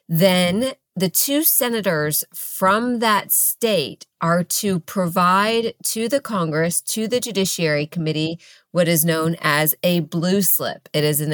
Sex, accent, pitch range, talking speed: female, American, 170-200 Hz, 145 wpm